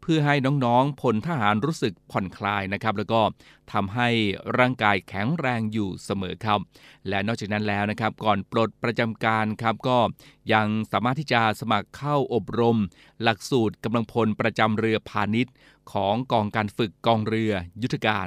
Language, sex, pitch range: Thai, male, 105-120 Hz